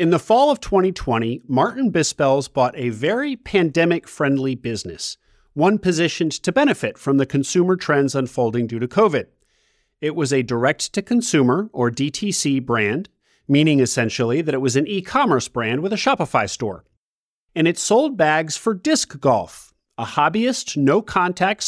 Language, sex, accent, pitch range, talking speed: English, male, American, 130-185 Hz, 145 wpm